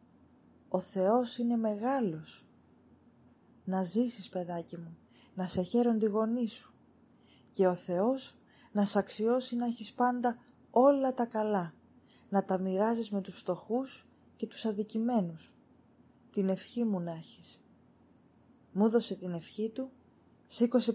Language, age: Greek, 20-39